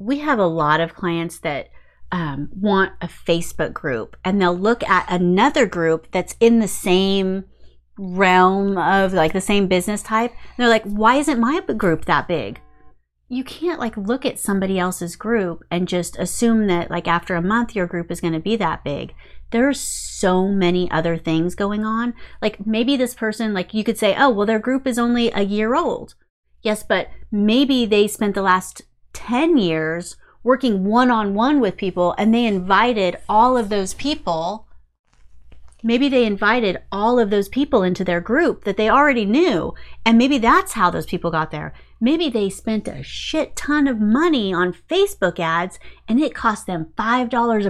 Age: 30-49